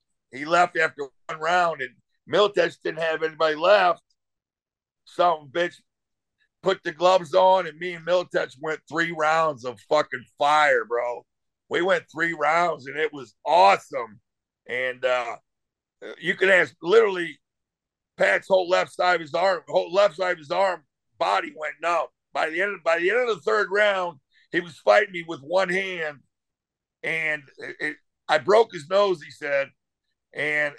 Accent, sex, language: American, male, English